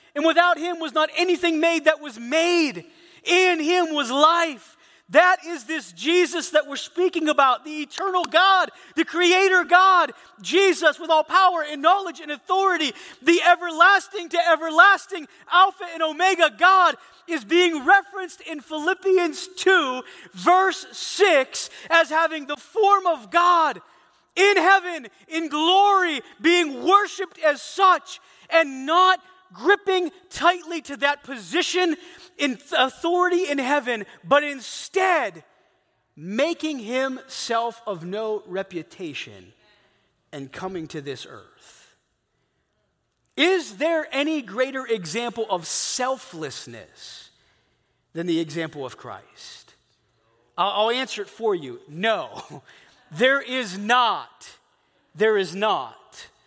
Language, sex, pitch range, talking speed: English, male, 255-355 Hz, 120 wpm